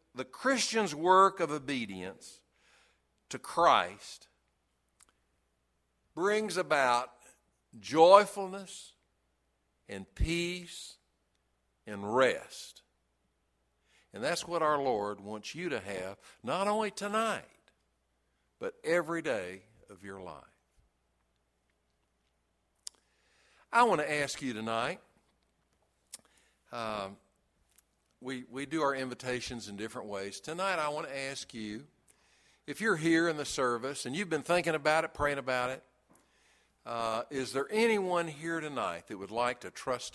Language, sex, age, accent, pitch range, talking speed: English, male, 60-79, American, 90-150 Hz, 120 wpm